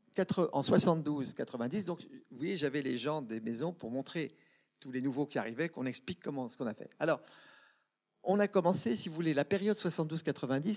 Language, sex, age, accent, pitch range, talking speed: French, male, 50-69, French, 135-185 Hz, 185 wpm